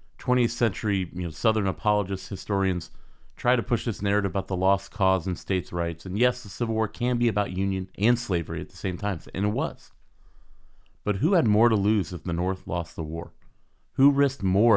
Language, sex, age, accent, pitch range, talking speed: English, male, 30-49, American, 90-110 Hz, 205 wpm